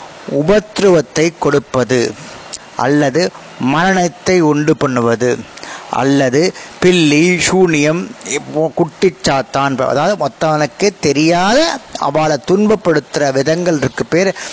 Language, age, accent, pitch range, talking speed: Tamil, 20-39, native, 145-185 Hz, 85 wpm